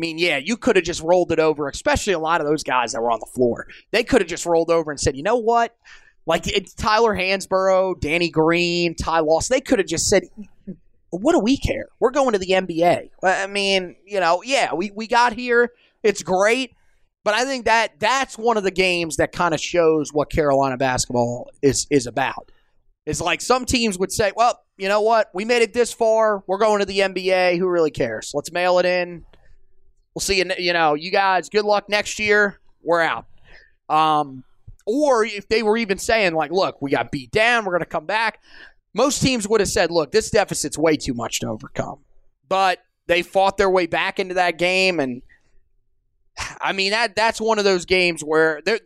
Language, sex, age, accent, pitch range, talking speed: English, male, 30-49, American, 155-210 Hz, 210 wpm